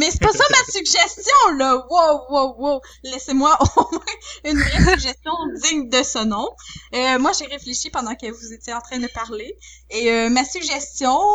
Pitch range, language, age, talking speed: 240-305 Hz, French, 20-39, 190 wpm